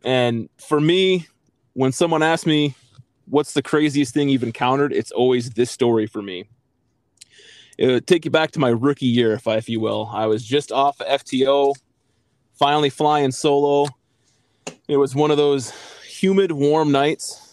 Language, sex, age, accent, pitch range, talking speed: English, male, 20-39, American, 120-145 Hz, 160 wpm